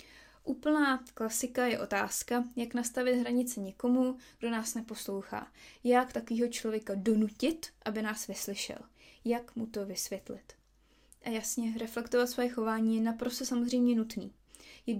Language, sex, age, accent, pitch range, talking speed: Czech, female, 20-39, native, 215-255 Hz, 130 wpm